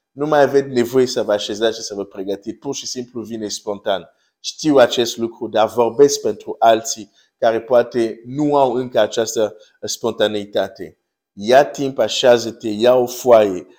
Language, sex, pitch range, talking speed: Romanian, male, 110-135 Hz, 160 wpm